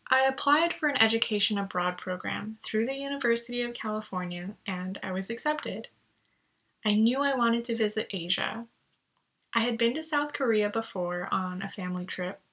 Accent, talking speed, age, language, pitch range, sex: American, 165 wpm, 10-29, English, 200-265 Hz, female